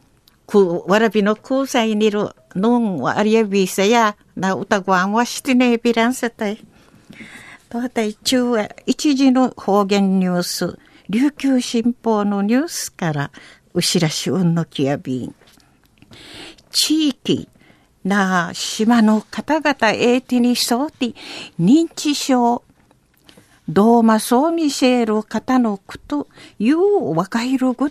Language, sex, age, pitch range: Japanese, female, 60-79, 210-270 Hz